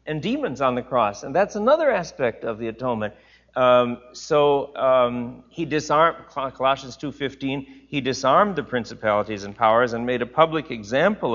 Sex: male